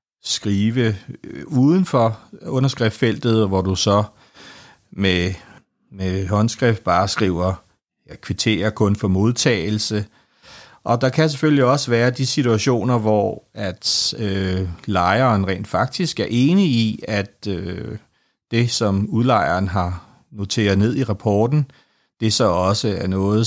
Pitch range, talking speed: 100-120 Hz, 125 wpm